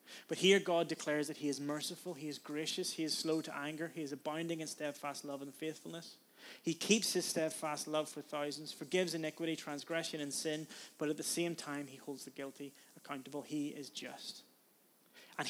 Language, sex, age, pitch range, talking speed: English, male, 20-39, 145-170 Hz, 195 wpm